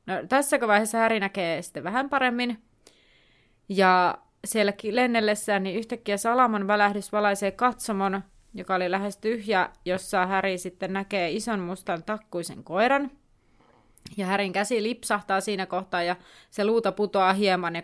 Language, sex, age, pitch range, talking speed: Finnish, female, 30-49, 185-220 Hz, 140 wpm